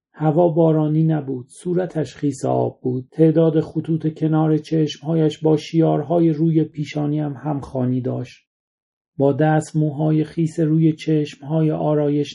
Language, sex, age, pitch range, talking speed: Persian, male, 40-59, 140-160 Hz, 120 wpm